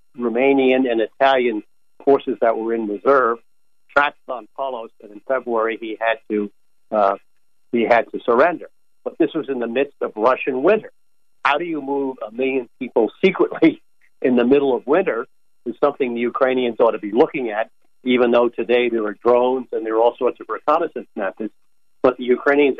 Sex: male